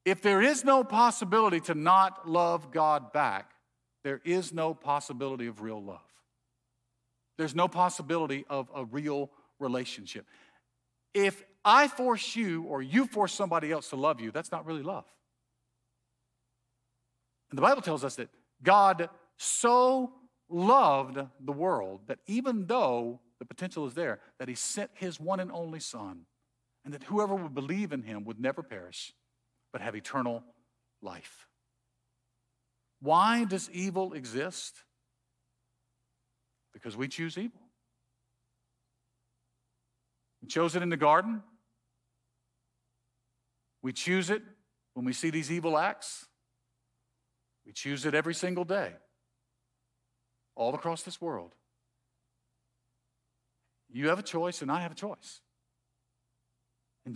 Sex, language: male, English